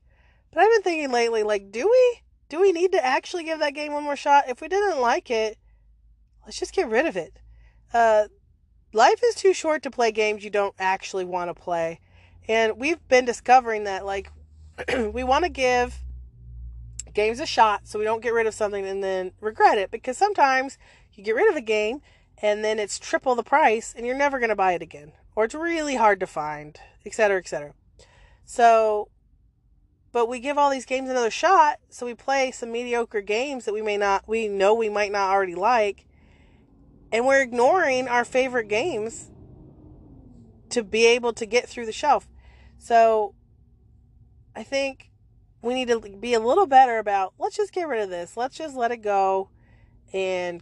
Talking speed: 190 wpm